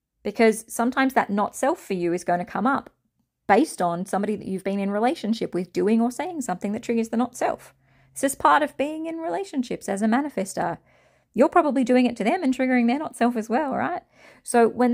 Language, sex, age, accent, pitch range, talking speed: English, female, 30-49, Australian, 185-245 Hz, 215 wpm